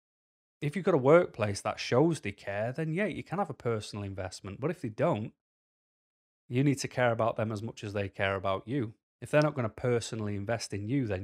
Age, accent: 30-49, British